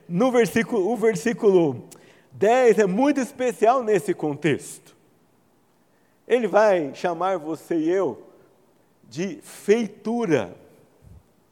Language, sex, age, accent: Portuguese, male, 50-69, Brazilian